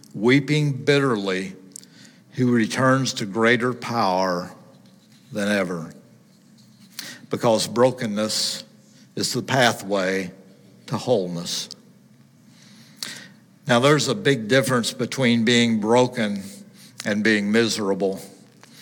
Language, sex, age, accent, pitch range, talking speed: English, male, 60-79, American, 110-130 Hz, 85 wpm